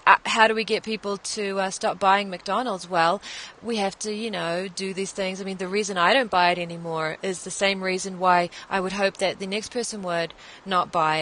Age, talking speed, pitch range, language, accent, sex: 20-39, 235 wpm, 185-215 Hz, English, Australian, female